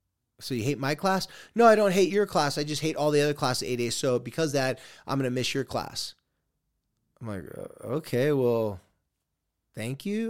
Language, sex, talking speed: English, male, 210 wpm